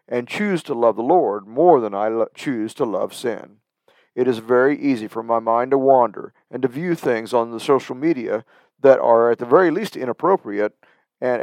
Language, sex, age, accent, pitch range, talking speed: English, male, 50-69, American, 115-140 Hz, 200 wpm